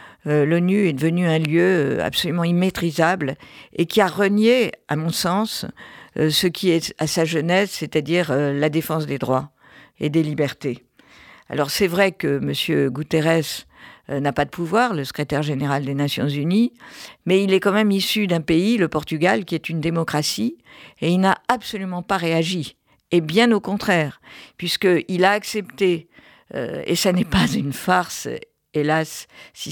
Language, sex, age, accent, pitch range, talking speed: French, female, 50-69, French, 155-195 Hz, 160 wpm